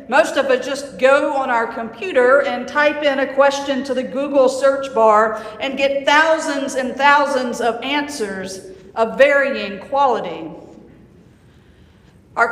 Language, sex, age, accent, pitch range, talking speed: English, female, 50-69, American, 245-310 Hz, 140 wpm